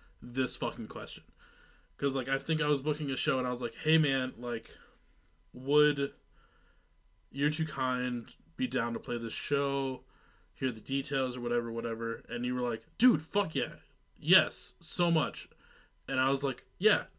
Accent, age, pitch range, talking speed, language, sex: American, 20-39, 130-155 Hz, 175 wpm, English, male